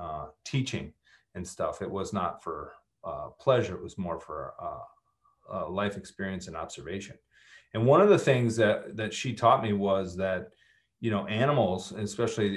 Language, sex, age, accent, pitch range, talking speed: English, male, 40-59, American, 95-115 Hz, 170 wpm